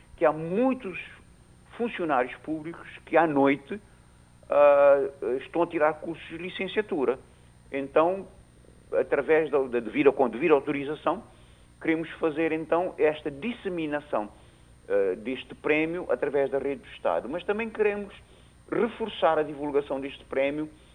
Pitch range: 125-190 Hz